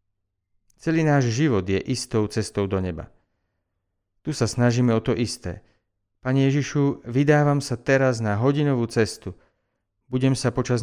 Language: Slovak